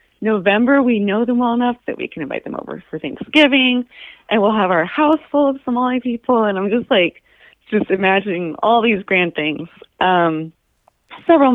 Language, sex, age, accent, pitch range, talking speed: English, female, 30-49, American, 160-210 Hz, 180 wpm